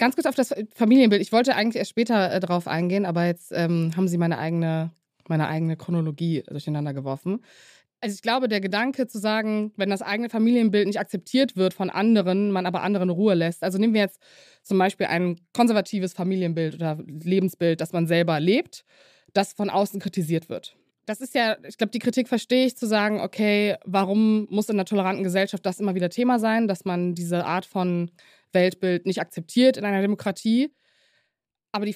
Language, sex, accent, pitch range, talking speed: German, female, German, 175-215 Hz, 190 wpm